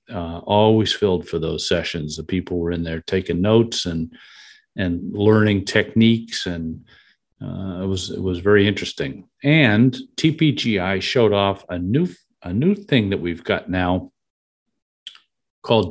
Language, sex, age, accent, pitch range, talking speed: English, male, 50-69, American, 90-115 Hz, 145 wpm